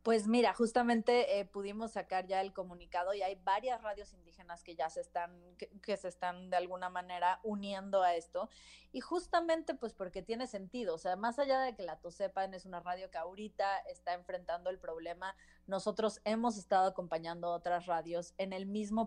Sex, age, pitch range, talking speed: female, 30-49, 180-225 Hz, 190 wpm